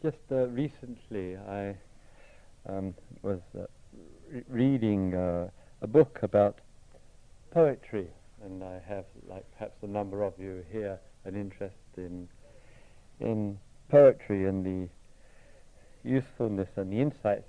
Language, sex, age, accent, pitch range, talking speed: English, male, 60-79, British, 100-120 Hz, 120 wpm